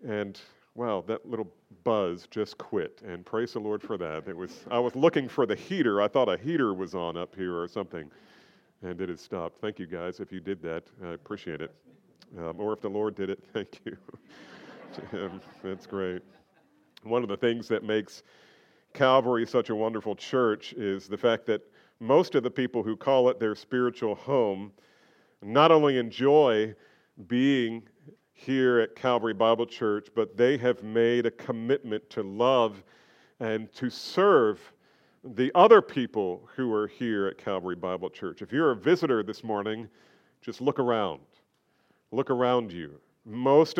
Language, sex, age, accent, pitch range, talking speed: English, male, 40-59, American, 105-130 Hz, 170 wpm